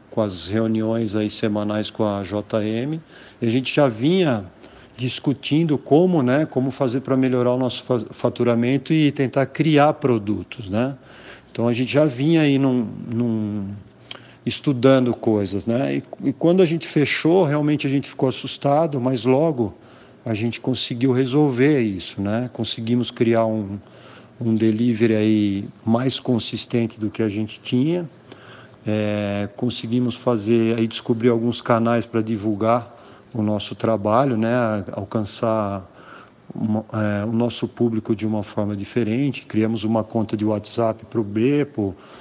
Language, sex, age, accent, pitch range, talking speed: Portuguese, male, 50-69, Brazilian, 110-130 Hz, 145 wpm